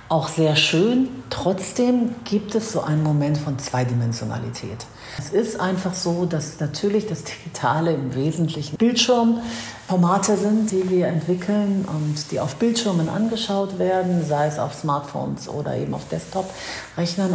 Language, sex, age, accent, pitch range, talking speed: German, female, 50-69, German, 145-195 Hz, 140 wpm